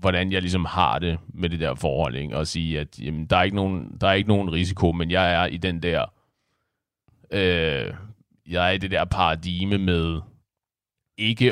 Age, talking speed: 30-49, 200 wpm